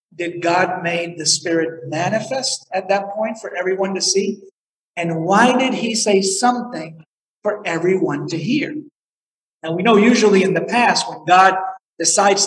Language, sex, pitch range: English, male, 165-220 Hz